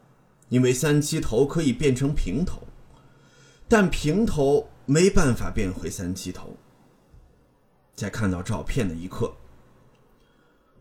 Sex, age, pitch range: male, 30-49, 100-145 Hz